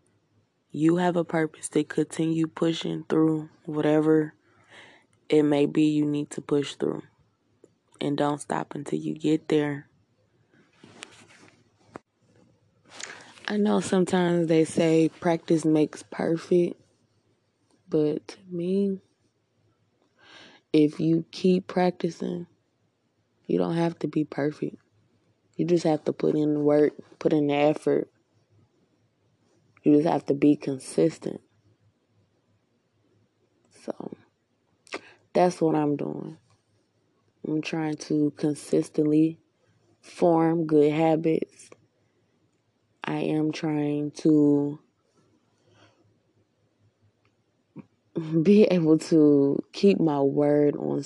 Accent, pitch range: American, 145-165 Hz